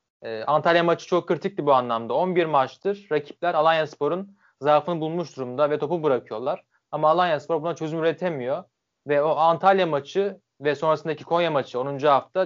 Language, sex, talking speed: Turkish, male, 155 wpm